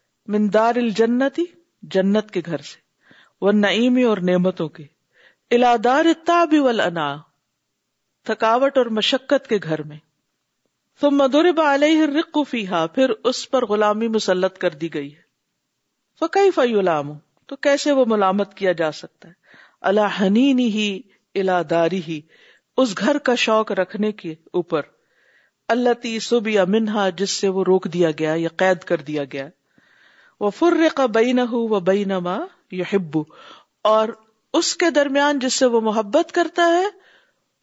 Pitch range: 180-245 Hz